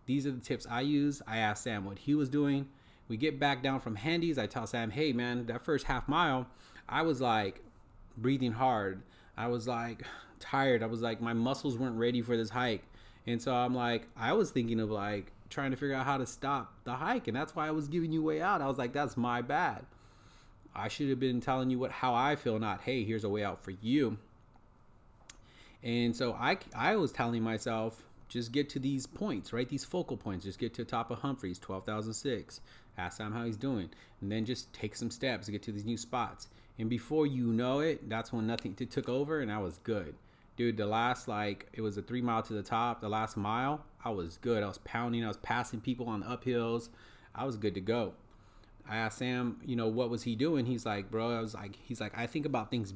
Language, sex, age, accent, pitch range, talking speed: English, male, 30-49, American, 110-130 Hz, 235 wpm